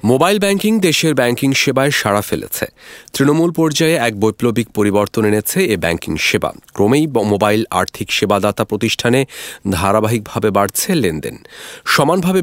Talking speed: 120 wpm